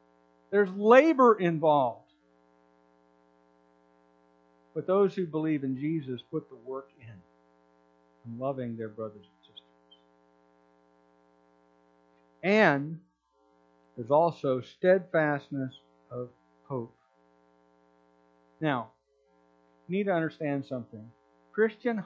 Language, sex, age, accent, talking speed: English, male, 50-69, American, 85 wpm